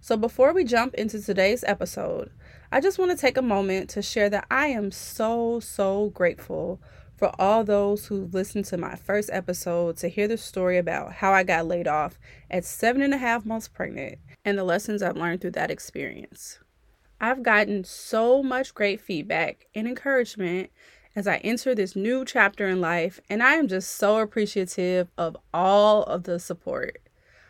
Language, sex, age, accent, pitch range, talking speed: English, female, 20-39, American, 185-250 Hz, 180 wpm